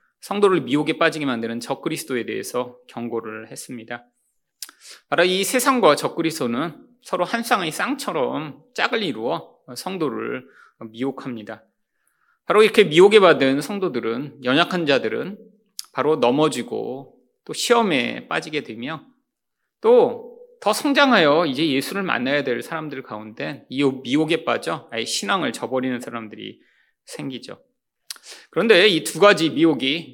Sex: male